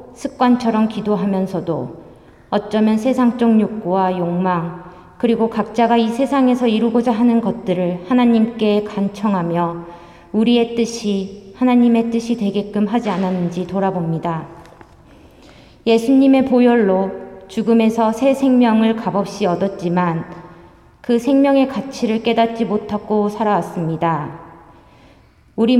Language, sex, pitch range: Korean, female, 175-230 Hz